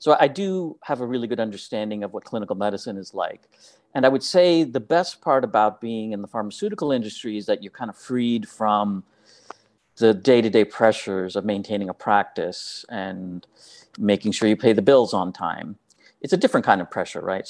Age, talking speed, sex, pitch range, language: 40-59, 195 wpm, male, 105-135 Hz, English